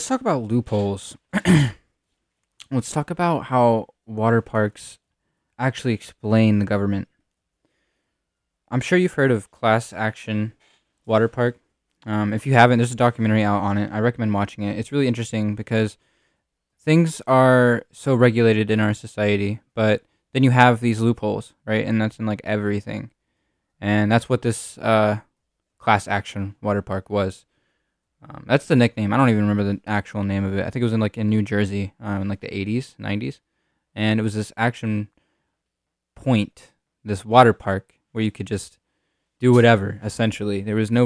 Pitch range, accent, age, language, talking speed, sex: 105-120 Hz, American, 10-29, English, 170 wpm, male